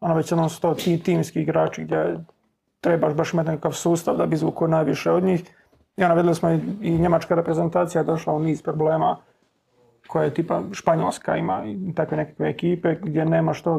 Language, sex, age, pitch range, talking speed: Croatian, male, 30-49, 155-180 Hz, 180 wpm